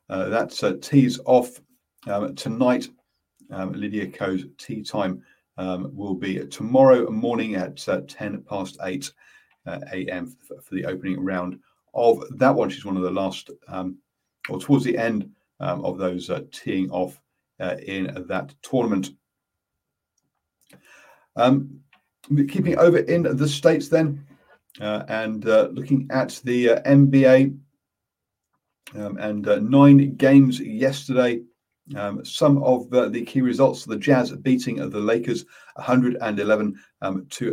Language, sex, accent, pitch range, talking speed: English, male, British, 100-135 Hz, 140 wpm